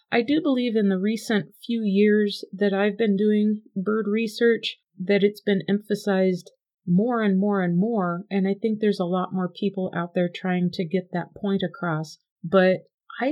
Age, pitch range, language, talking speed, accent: 40-59, 180-210 Hz, English, 185 wpm, American